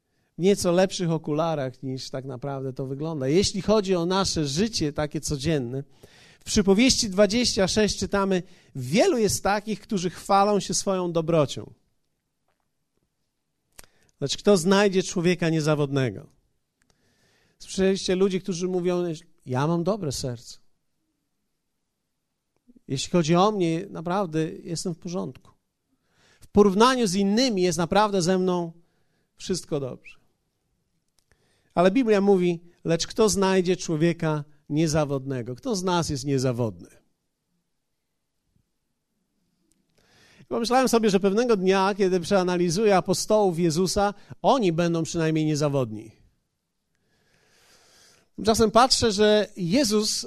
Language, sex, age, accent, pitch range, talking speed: Polish, male, 50-69, native, 155-205 Hz, 105 wpm